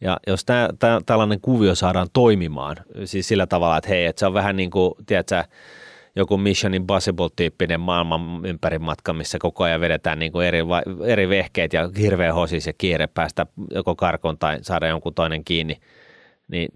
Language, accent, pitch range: Finnish, native, 85-105 Hz